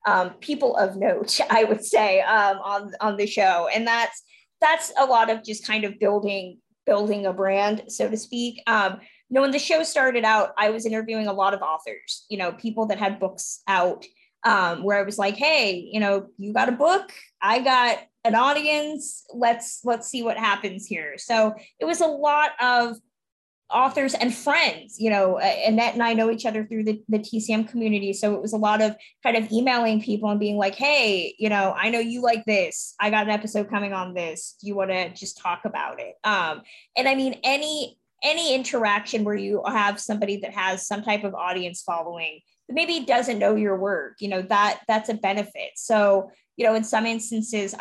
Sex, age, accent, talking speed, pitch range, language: female, 20-39, American, 210 wpm, 200-240 Hz, English